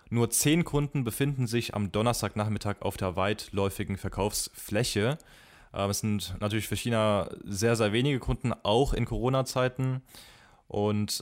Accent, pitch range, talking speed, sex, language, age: German, 100-115 Hz, 135 wpm, male, German, 20-39